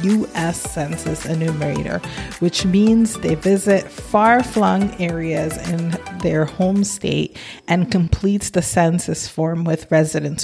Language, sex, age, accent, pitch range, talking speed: English, female, 20-39, American, 160-200 Hz, 115 wpm